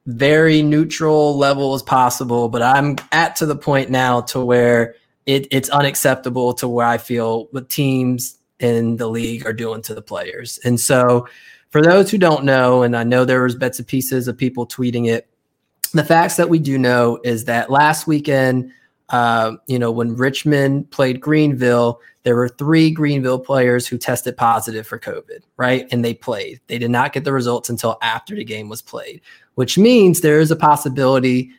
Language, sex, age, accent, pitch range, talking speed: English, male, 20-39, American, 120-145 Hz, 185 wpm